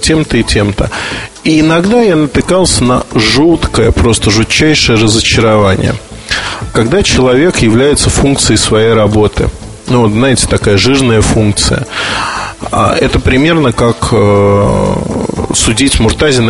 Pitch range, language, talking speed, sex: 105-130 Hz, Russian, 110 wpm, male